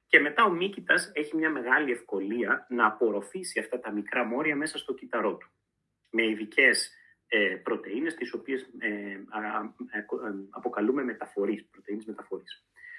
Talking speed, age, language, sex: 115 wpm, 30-49, Greek, male